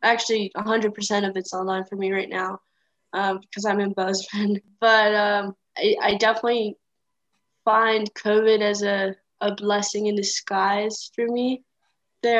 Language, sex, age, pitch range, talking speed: English, female, 10-29, 195-215 Hz, 145 wpm